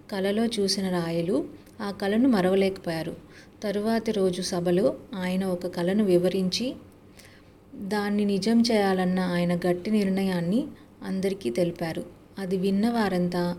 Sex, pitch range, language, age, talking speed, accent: female, 180-205 Hz, Telugu, 30-49, 100 wpm, native